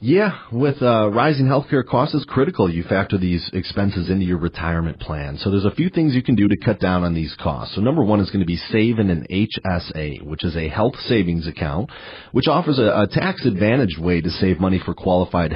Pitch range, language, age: 85-115 Hz, English, 30-49